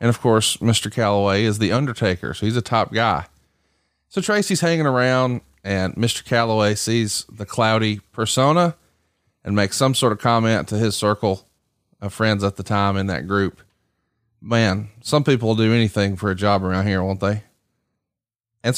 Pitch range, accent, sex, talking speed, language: 105-135 Hz, American, male, 175 wpm, English